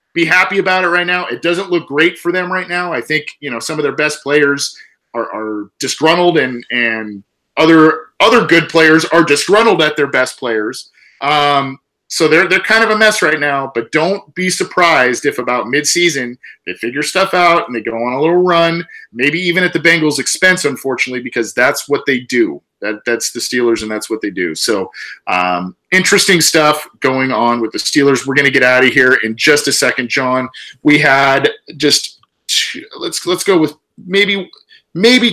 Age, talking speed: 40-59, 200 wpm